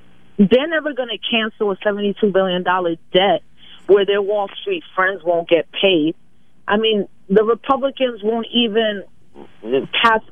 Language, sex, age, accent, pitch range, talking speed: English, female, 40-59, American, 180-225 Hz, 145 wpm